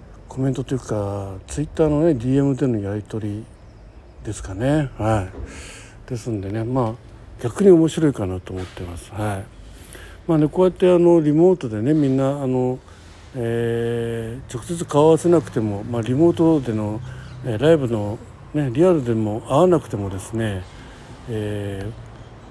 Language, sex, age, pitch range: Japanese, male, 60-79, 110-150 Hz